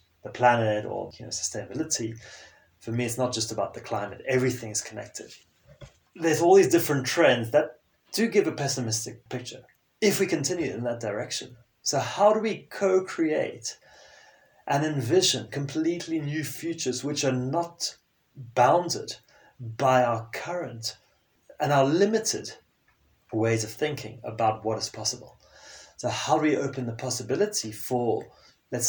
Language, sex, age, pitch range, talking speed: English, male, 30-49, 115-140 Hz, 145 wpm